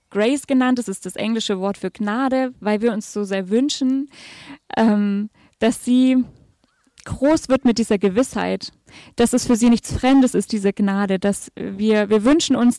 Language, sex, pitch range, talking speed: German, female, 205-250 Hz, 175 wpm